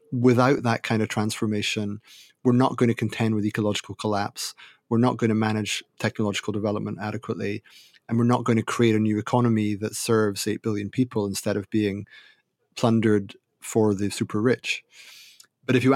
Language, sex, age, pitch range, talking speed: English, male, 30-49, 105-125 Hz, 175 wpm